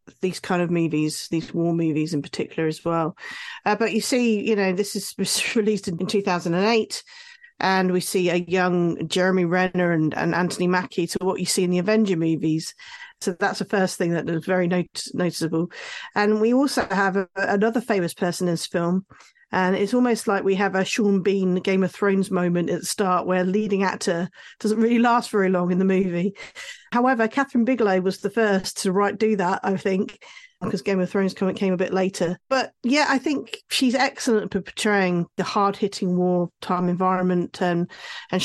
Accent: British